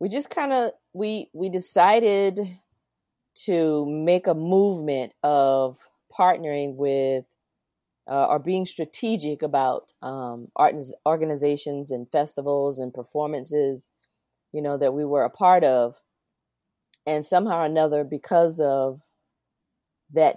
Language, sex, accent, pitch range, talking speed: English, female, American, 135-165 Hz, 120 wpm